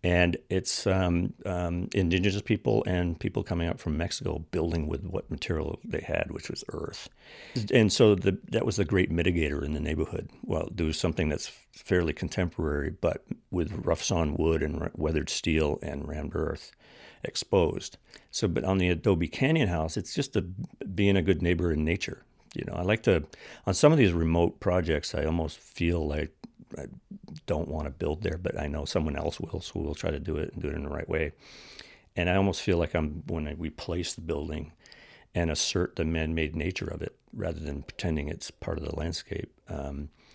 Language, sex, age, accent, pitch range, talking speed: English, male, 60-79, American, 80-95 Hz, 200 wpm